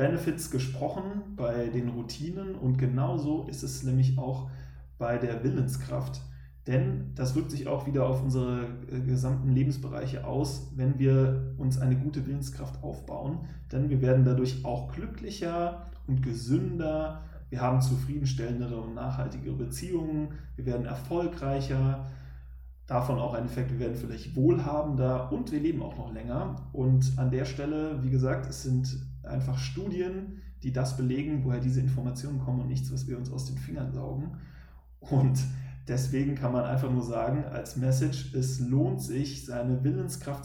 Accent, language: German, German